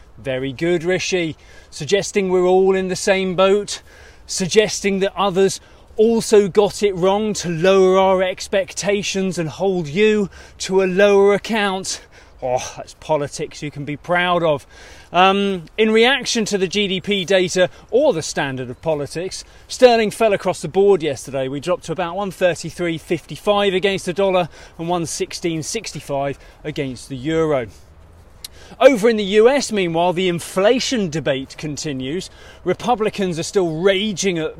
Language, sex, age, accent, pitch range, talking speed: English, male, 30-49, British, 150-195 Hz, 140 wpm